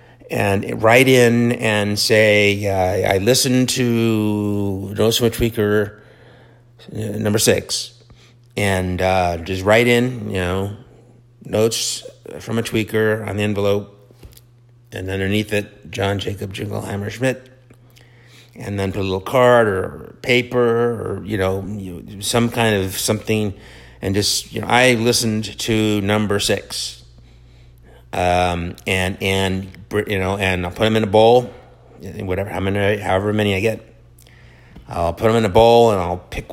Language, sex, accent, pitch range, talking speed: English, male, American, 95-120 Hz, 140 wpm